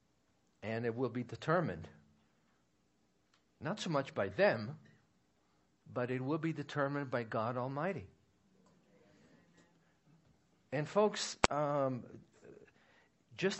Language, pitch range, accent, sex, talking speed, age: English, 115-160 Hz, American, male, 95 wpm, 50-69